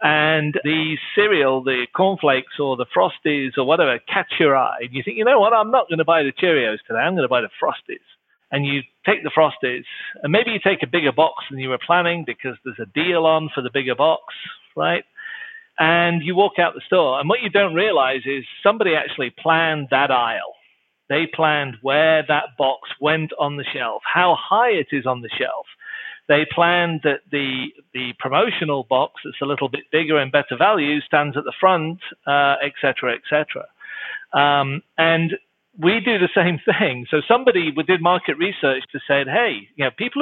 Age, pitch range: 40-59, 140-185 Hz